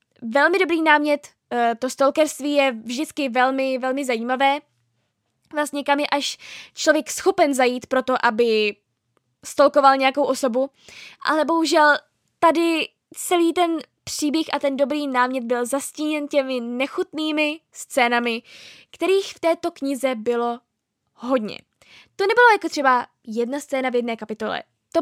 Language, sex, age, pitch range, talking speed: Czech, female, 10-29, 245-300 Hz, 125 wpm